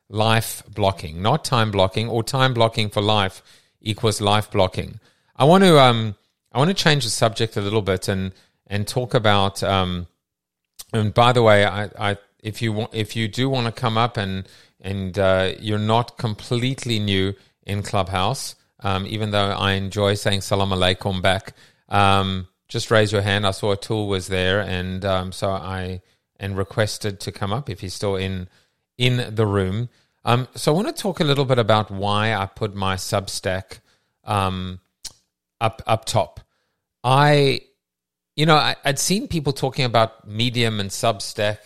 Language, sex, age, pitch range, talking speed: English, male, 30-49, 95-120 Hz, 175 wpm